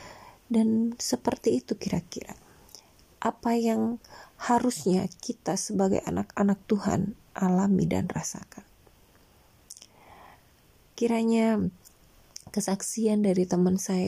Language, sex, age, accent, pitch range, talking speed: Indonesian, female, 20-39, native, 160-200 Hz, 80 wpm